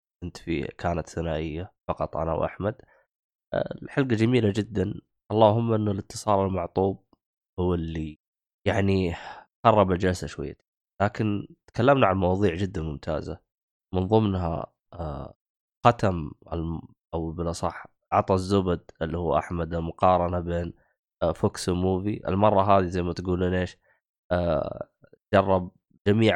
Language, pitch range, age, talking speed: Arabic, 85-105 Hz, 20-39, 110 wpm